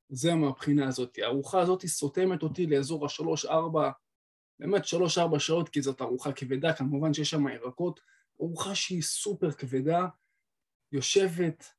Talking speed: 135 wpm